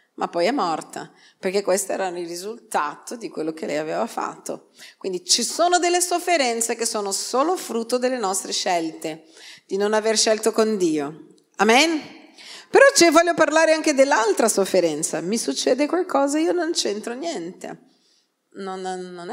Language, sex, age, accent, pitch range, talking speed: Italian, female, 40-59, native, 175-270 Hz, 155 wpm